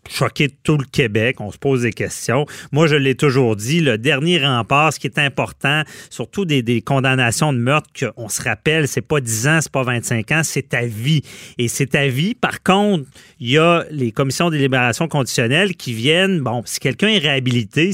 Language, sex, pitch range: French, male, 125-160 Hz